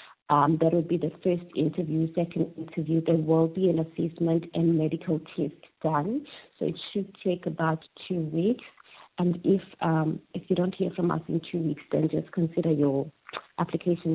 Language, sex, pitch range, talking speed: English, female, 165-195 Hz, 180 wpm